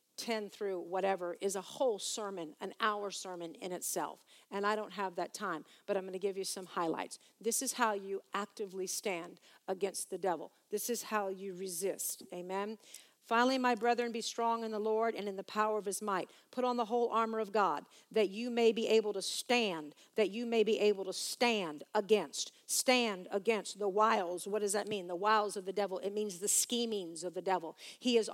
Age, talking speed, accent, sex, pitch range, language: 50-69, 210 wpm, American, female, 195-230 Hz, English